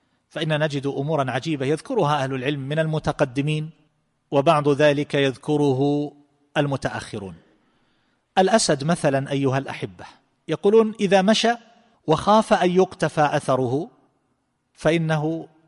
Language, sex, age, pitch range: Arabic, male, 40-59, 140-180 Hz